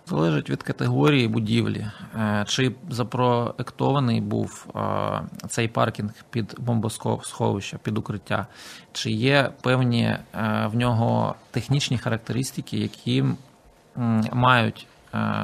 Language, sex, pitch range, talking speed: Ukrainian, male, 110-125 Hz, 85 wpm